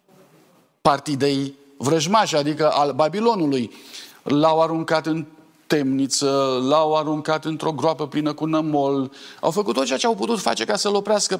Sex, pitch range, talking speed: male, 145-195 Hz, 145 wpm